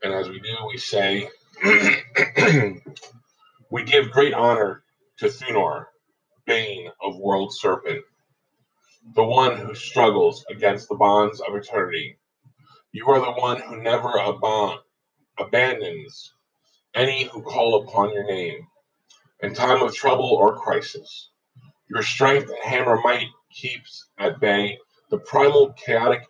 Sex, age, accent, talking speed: male, 30-49, American, 125 wpm